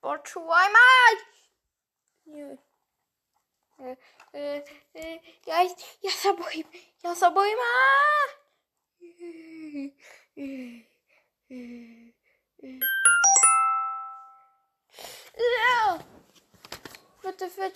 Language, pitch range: Slovak, 265-375 Hz